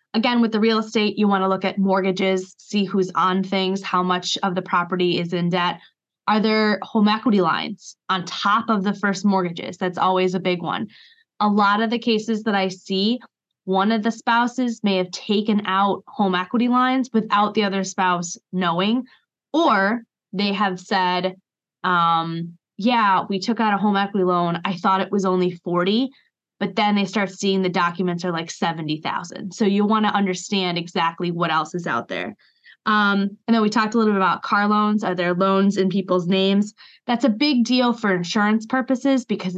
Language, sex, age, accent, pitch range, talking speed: English, female, 20-39, American, 185-220 Hz, 195 wpm